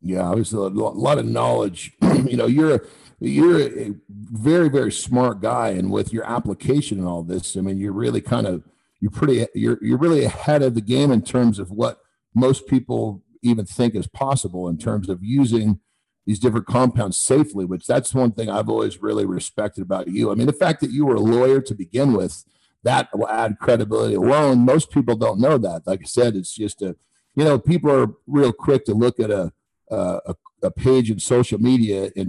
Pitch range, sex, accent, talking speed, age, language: 100-135 Hz, male, American, 210 wpm, 50-69, English